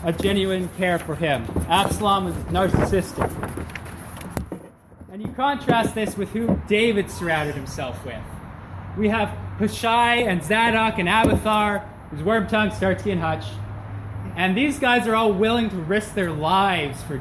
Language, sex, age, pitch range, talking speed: English, male, 20-39, 140-210 Hz, 145 wpm